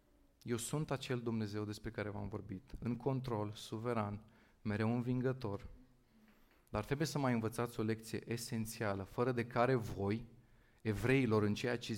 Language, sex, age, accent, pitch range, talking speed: Romanian, male, 30-49, native, 105-130 Hz, 145 wpm